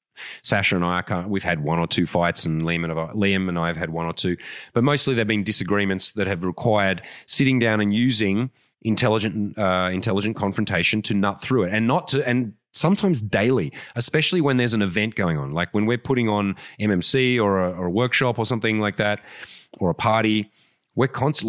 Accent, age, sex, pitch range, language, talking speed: Australian, 30-49, male, 100-125 Hz, English, 195 wpm